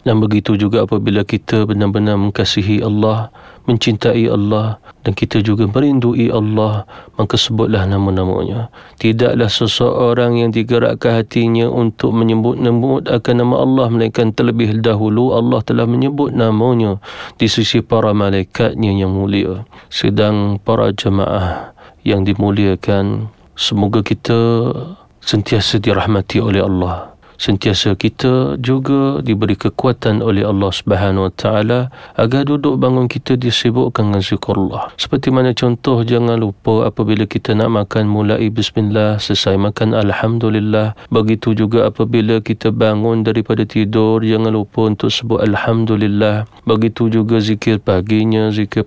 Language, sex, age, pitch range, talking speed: Malay, male, 40-59, 105-120 Hz, 125 wpm